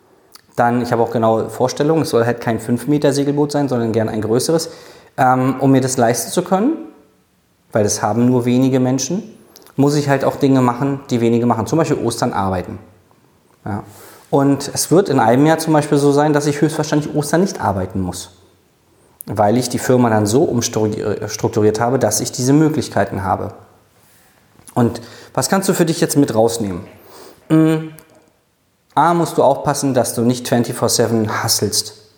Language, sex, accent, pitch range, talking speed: German, male, German, 110-150 Hz, 170 wpm